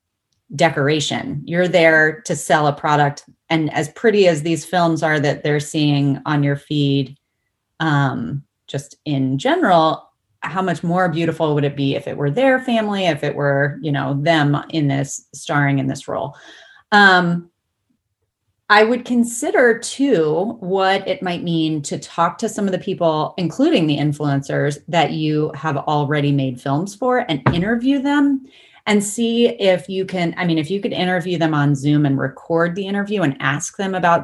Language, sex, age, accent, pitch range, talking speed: English, female, 30-49, American, 145-180 Hz, 175 wpm